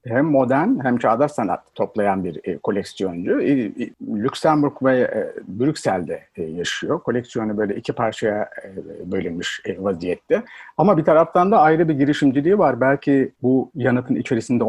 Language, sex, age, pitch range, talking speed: Turkish, male, 60-79, 110-145 Hz, 150 wpm